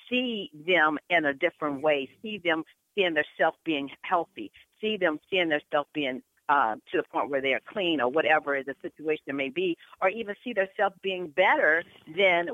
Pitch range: 155-200 Hz